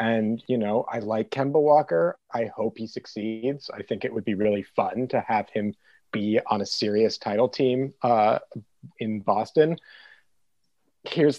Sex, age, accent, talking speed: male, 30-49, American, 165 wpm